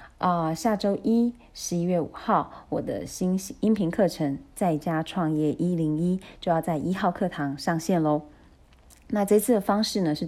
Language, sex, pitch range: Chinese, female, 155-185 Hz